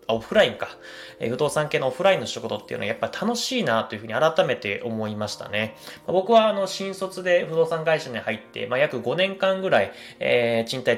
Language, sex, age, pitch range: Japanese, male, 20-39, 110-165 Hz